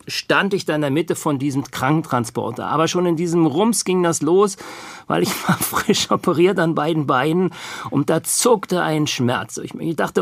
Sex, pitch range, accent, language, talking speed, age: male, 140-185 Hz, German, German, 190 wpm, 50-69